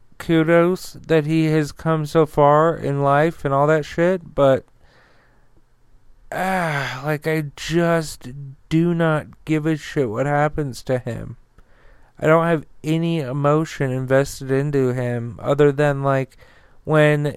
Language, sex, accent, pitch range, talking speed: English, male, American, 135-160 Hz, 135 wpm